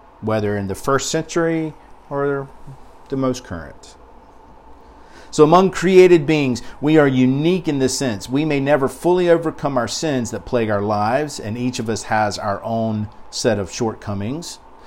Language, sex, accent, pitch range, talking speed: English, male, American, 115-155 Hz, 160 wpm